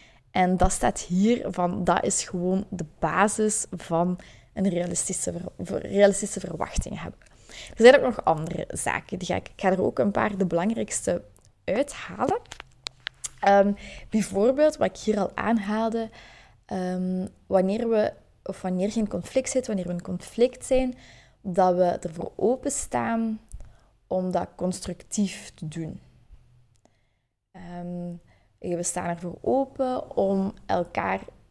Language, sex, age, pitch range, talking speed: Dutch, female, 20-39, 175-215 Hz, 135 wpm